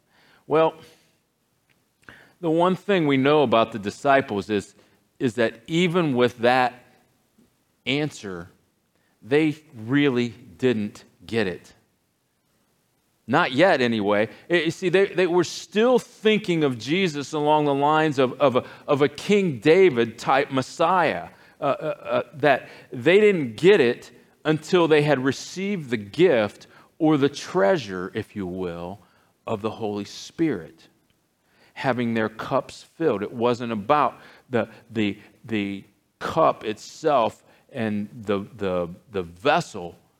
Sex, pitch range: male, 110-160 Hz